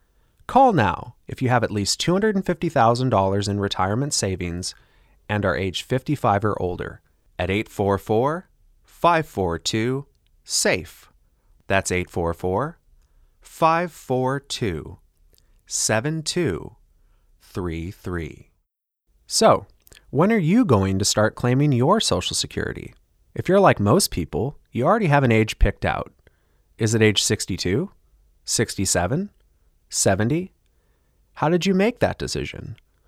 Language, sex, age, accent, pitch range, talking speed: English, male, 30-49, American, 95-135 Hz, 100 wpm